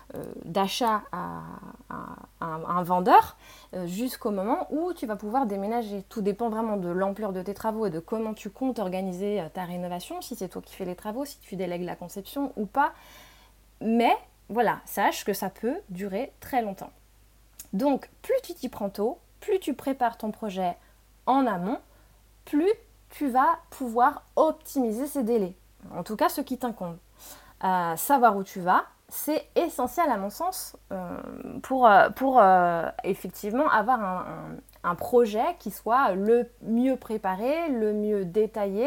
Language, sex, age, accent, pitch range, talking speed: French, female, 20-39, French, 190-260 Hz, 165 wpm